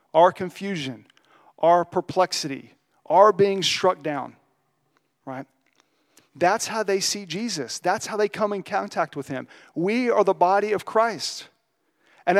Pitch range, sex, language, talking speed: 155-195 Hz, male, English, 140 wpm